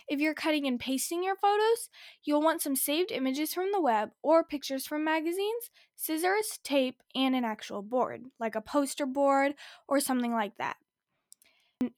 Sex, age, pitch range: female, 10-29, 240-315 Hz